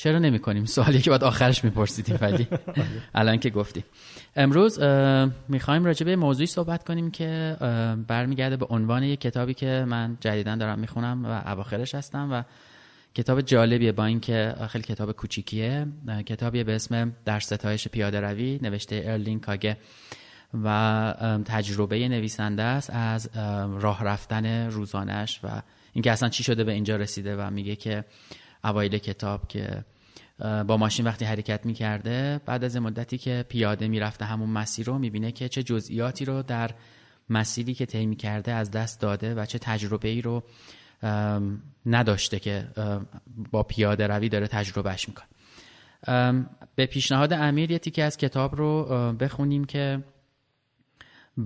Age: 20-39